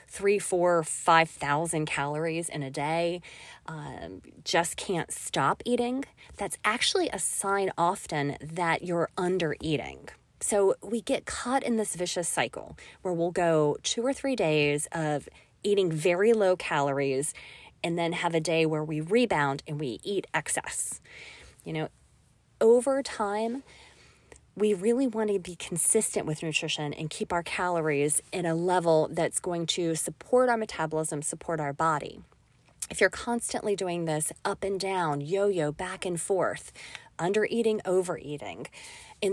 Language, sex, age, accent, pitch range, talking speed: English, female, 30-49, American, 160-210 Hz, 145 wpm